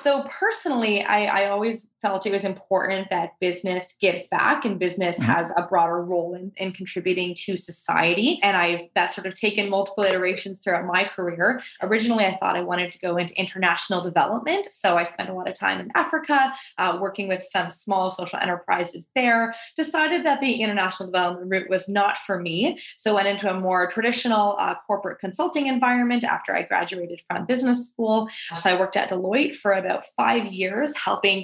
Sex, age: female, 20-39